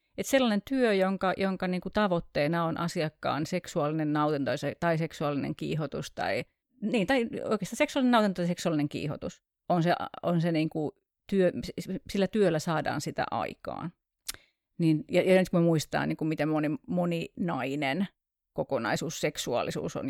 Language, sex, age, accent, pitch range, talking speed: Finnish, female, 30-49, native, 150-190 Hz, 150 wpm